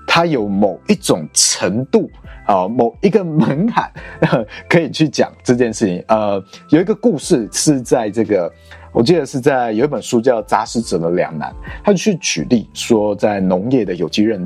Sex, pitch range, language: male, 105-170 Hz, Chinese